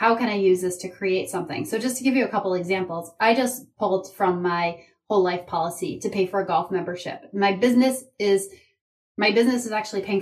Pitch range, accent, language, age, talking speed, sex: 185-225 Hz, American, English, 30-49, 210 wpm, female